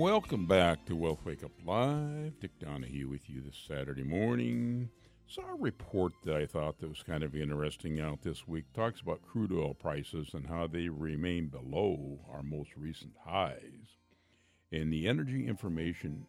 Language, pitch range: English, 80-120 Hz